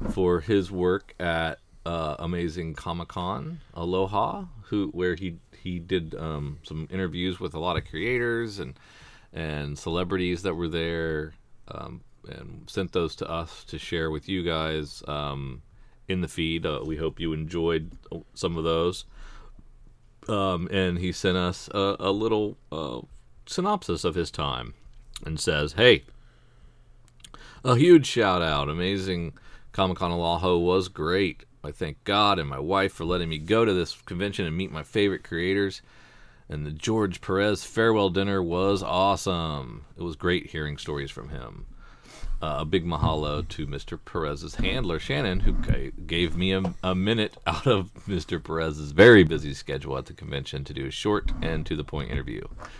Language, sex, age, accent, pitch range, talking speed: English, male, 40-59, American, 75-95 Hz, 160 wpm